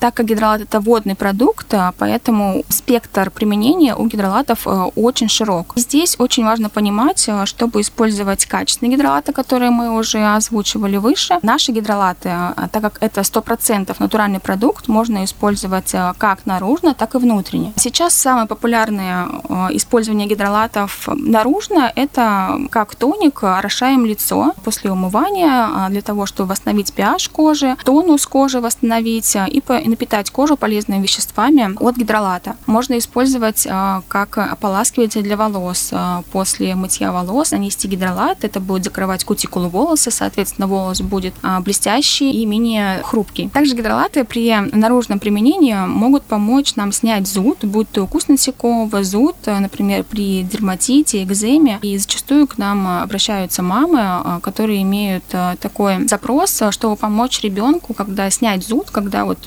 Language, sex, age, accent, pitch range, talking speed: Russian, female, 20-39, native, 200-245 Hz, 130 wpm